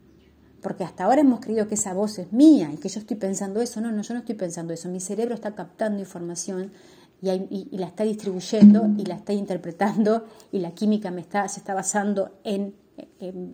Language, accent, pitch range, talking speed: Spanish, Argentinian, 185-250 Hz, 200 wpm